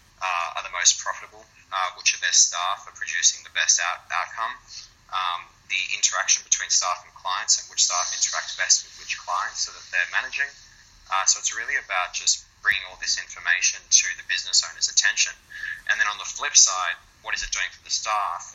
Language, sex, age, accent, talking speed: English, male, 20-39, Australian, 200 wpm